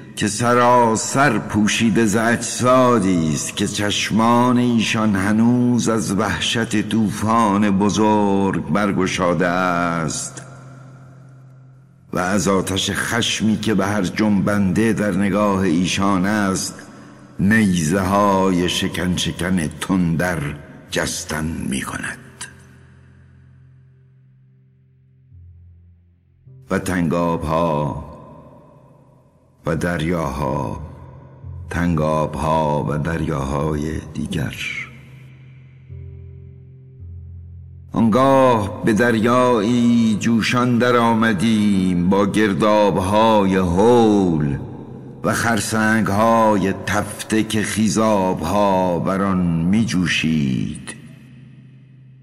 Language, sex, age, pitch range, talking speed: Persian, male, 60-79, 90-120 Hz, 70 wpm